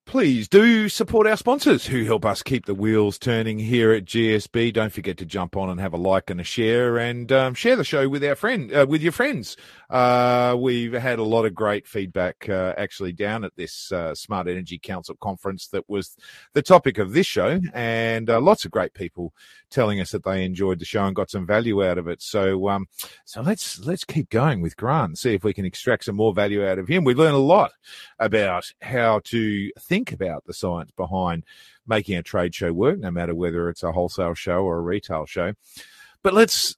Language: English